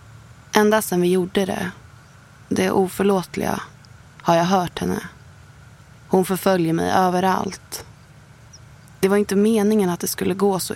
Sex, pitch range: female, 130-195 Hz